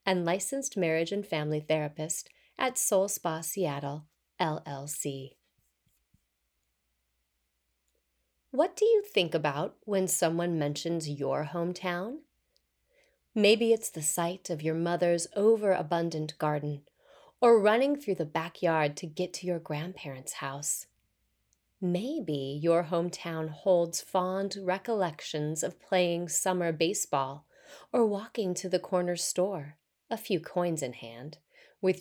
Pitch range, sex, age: 150-195 Hz, female, 30-49